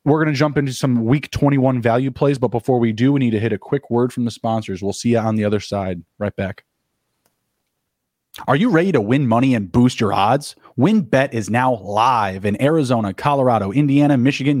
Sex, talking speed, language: male, 220 wpm, English